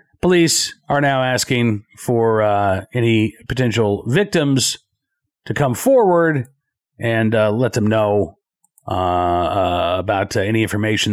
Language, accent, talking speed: English, American, 125 wpm